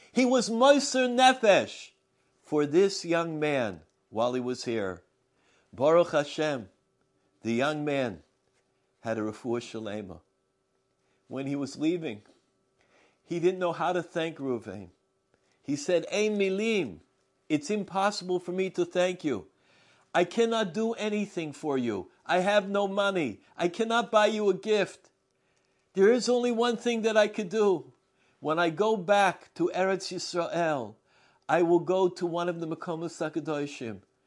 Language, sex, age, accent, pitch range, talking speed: English, male, 50-69, American, 145-205 Hz, 145 wpm